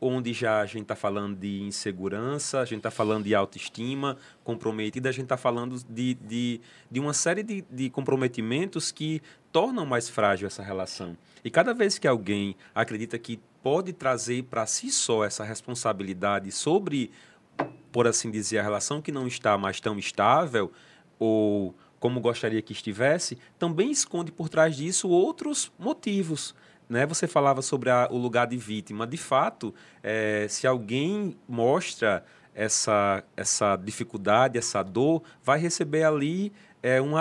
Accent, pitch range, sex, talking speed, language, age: Brazilian, 110-155 Hz, male, 150 wpm, Portuguese, 30-49